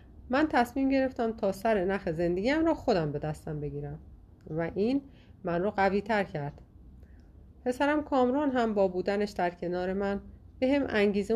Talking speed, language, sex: 155 wpm, Persian, female